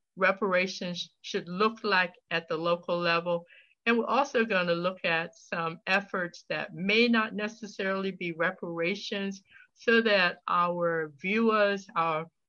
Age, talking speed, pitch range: 60-79, 130 wpm, 165-210 Hz